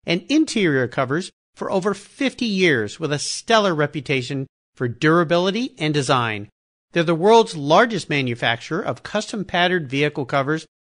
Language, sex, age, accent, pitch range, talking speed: English, male, 50-69, American, 135-210 Hz, 140 wpm